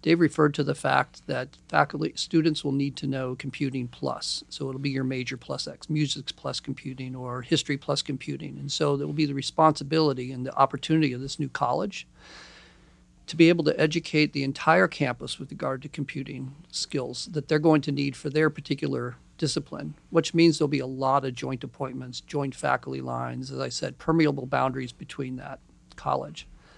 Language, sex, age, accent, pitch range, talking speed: English, male, 40-59, American, 130-155 Hz, 190 wpm